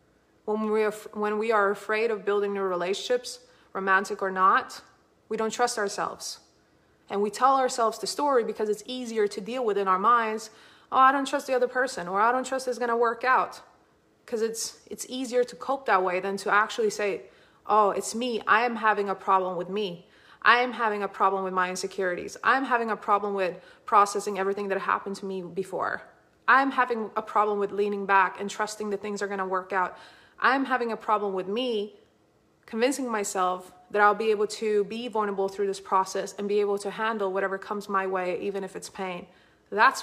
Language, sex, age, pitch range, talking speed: English, female, 20-39, 190-225 Hz, 205 wpm